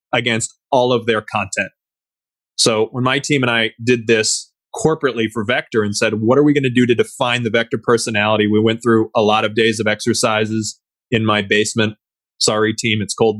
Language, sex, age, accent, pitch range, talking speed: English, male, 20-39, American, 110-130 Hz, 200 wpm